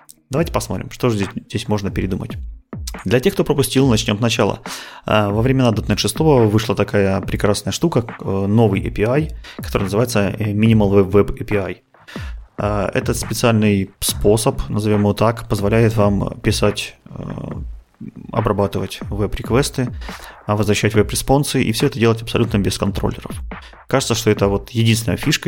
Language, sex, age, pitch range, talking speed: Russian, male, 30-49, 100-115 Hz, 130 wpm